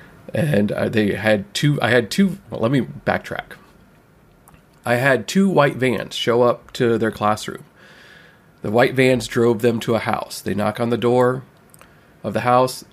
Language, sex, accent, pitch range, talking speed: English, male, American, 120-160 Hz, 170 wpm